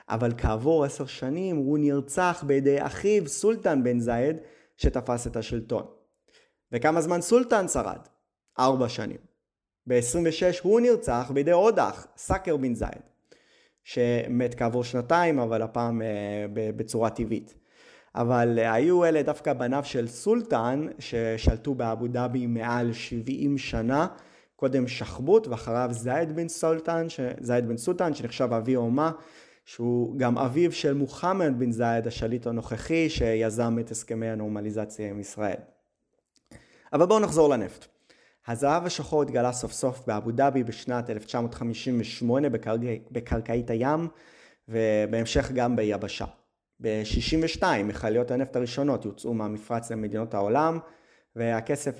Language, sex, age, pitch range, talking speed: English, male, 20-39, 115-150 Hz, 110 wpm